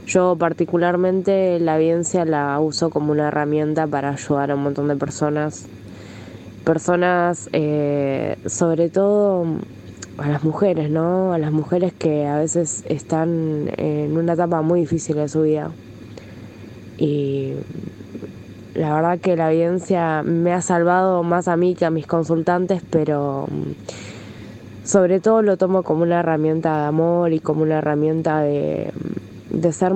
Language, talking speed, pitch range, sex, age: Spanish, 145 wpm, 145-170 Hz, female, 20-39